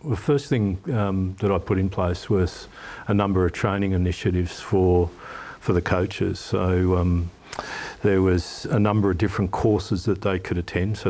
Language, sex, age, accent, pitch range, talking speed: English, male, 50-69, Australian, 90-105 Hz, 180 wpm